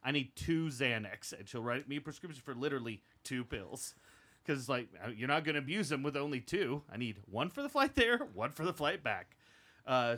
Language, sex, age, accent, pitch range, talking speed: English, male, 30-49, American, 110-150 Hz, 230 wpm